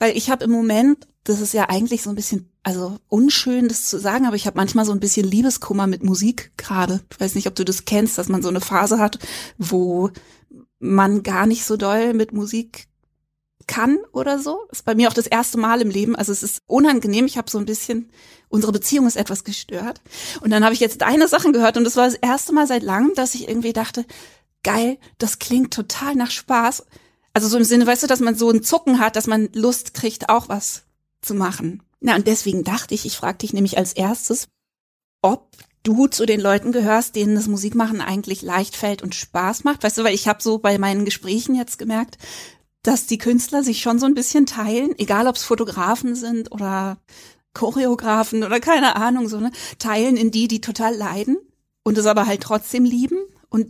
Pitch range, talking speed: 205-240 Hz, 215 wpm